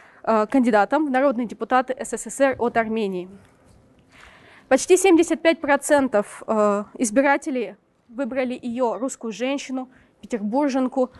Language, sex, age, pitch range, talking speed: Russian, female, 20-39, 235-300 Hz, 80 wpm